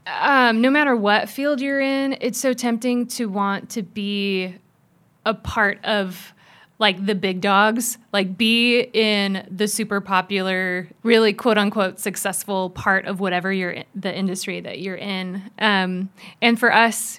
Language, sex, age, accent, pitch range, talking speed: English, female, 20-39, American, 190-220 Hz, 155 wpm